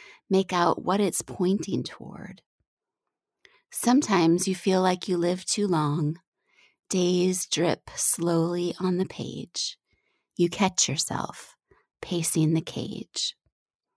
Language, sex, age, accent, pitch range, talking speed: English, female, 30-49, American, 165-205 Hz, 110 wpm